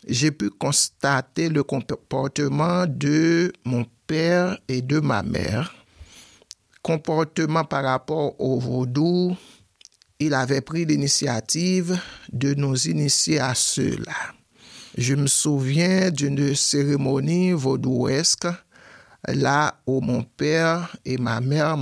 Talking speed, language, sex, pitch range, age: 105 wpm, French, male, 140-180 Hz, 60-79